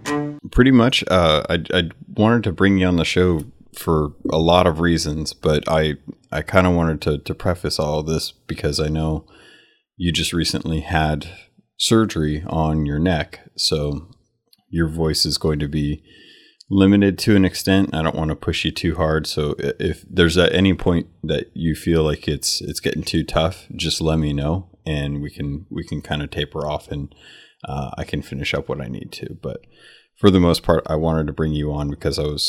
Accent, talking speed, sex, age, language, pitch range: American, 205 wpm, male, 30-49, English, 75-95 Hz